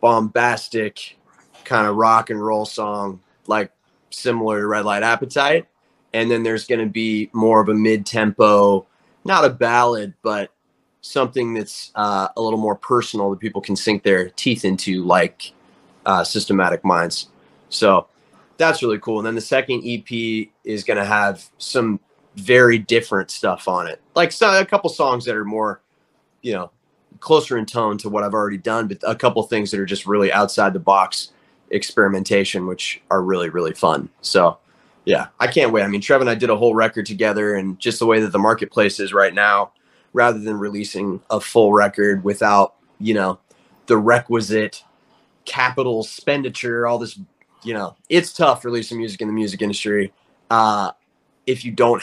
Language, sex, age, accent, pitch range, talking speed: English, male, 30-49, American, 100-115 Hz, 175 wpm